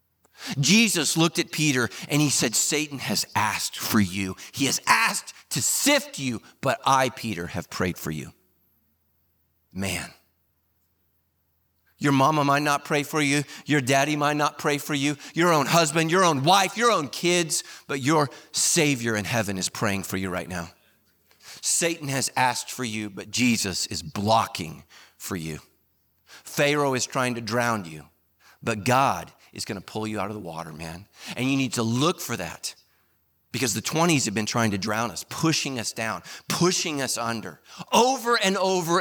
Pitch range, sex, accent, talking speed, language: 100-150 Hz, male, American, 175 wpm, English